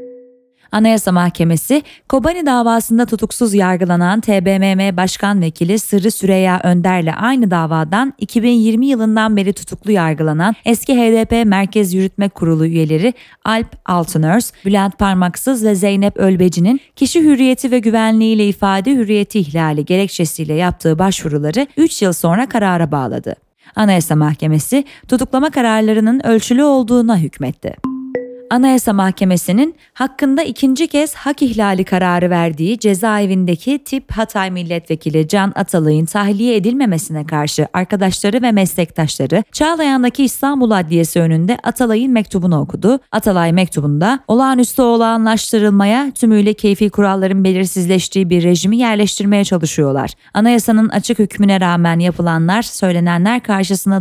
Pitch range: 180-235 Hz